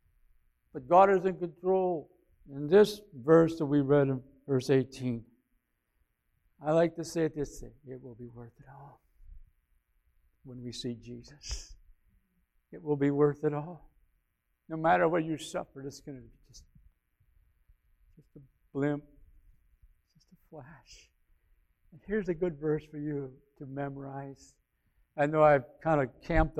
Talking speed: 155 wpm